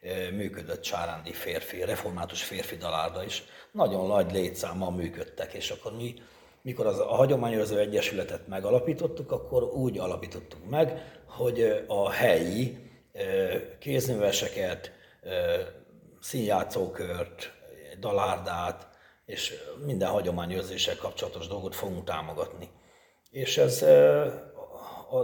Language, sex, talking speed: Hungarian, male, 95 wpm